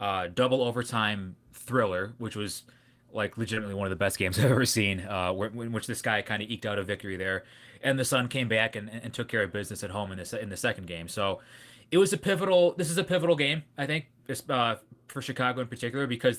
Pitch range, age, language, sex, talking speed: 105-135 Hz, 20-39, English, male, 240 wpm